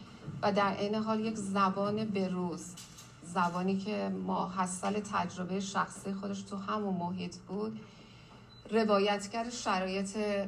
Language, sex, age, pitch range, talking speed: Persian, female, 40-59, 175-200 Hz, 120 wpm